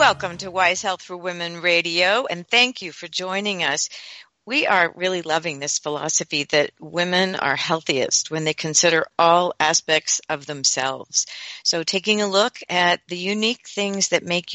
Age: 50-69